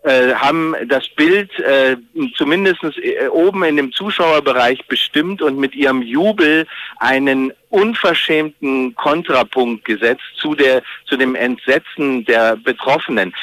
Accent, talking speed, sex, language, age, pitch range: German, 105 wpm, male, German, 50-69, 130-170 Hz